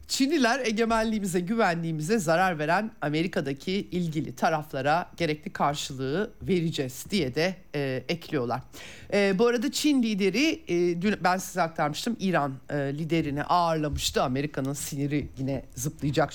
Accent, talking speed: native, 120 wpm